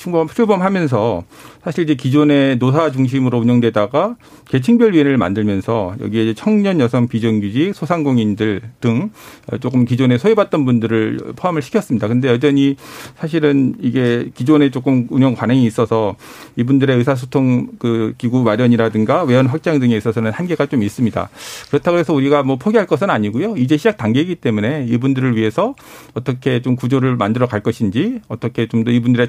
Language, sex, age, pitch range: Korean, male, 50-69, 120-160 Hz